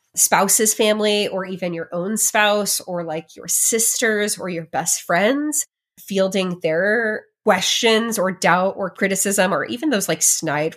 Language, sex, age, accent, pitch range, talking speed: English, female, 20-39, American, 185-245 Hz, 150 wpm